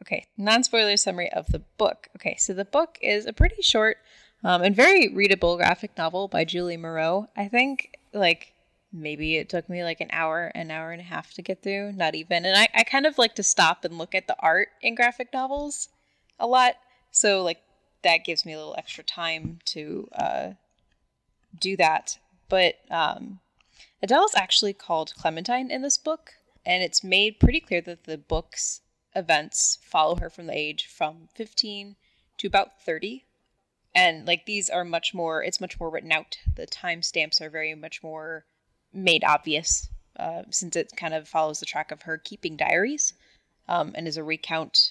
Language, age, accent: English, 10-29, American